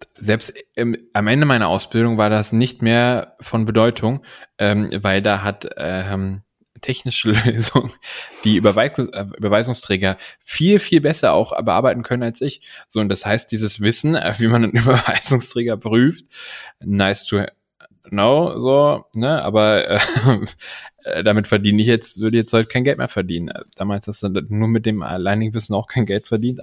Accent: German